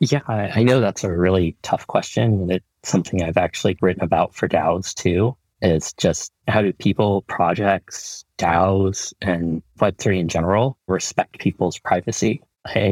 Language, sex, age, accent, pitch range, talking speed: English, male, 30-49, American, 85-100 Hz, 155 wpm